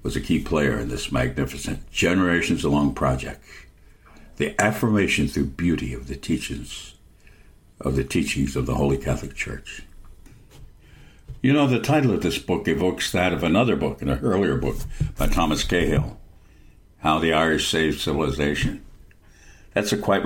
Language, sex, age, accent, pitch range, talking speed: English, male, 60-79, American, 70-100 Hz, 150 wpm